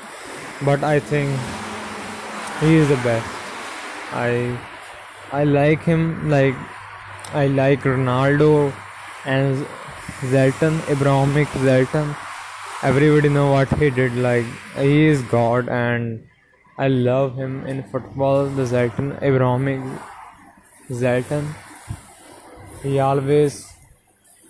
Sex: male